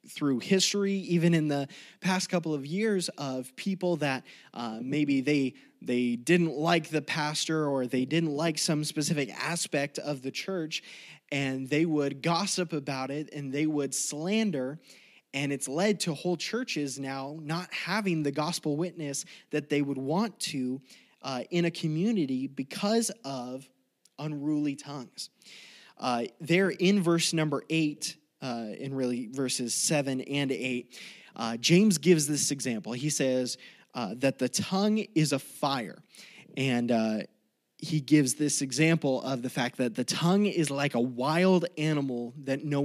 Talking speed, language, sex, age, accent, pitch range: 155 wpm, English, male, 20-39, American, 135-175 Hz